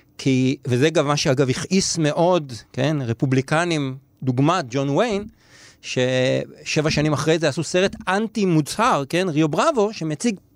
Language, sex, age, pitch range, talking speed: Hebrew, male, 50-69, 130-165 Hz, 135 wpm